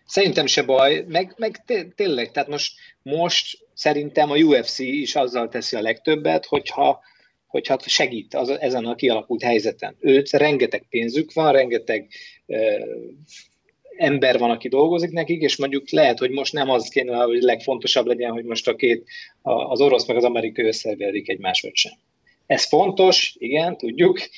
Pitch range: 120-175 Hz